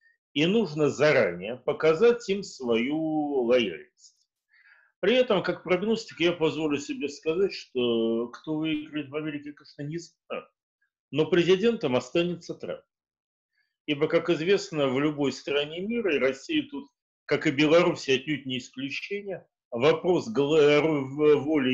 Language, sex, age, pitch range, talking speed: Russian, male, 40-59, 145-200 Hz, 125 wpm